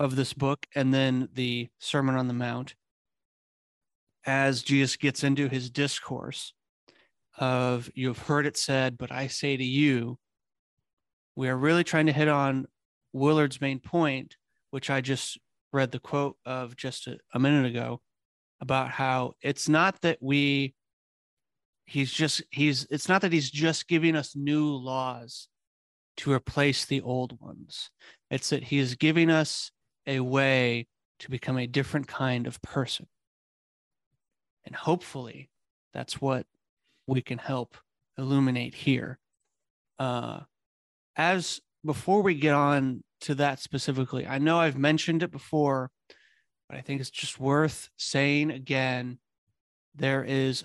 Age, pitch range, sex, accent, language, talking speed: 30-49, 125-145 Hz, male, American, English, 140 wpm